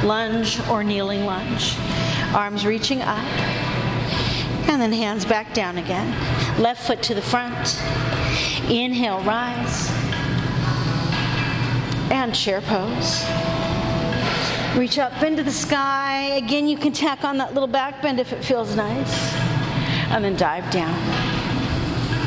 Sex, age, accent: female, 40-59, American